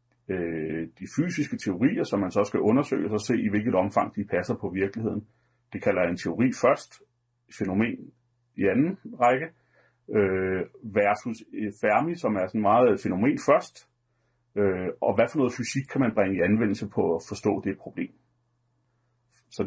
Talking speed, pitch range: 155 wpm, 100-120 Hz